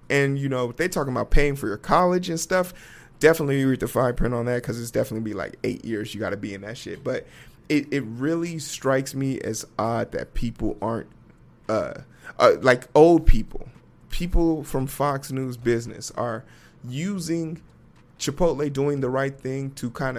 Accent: American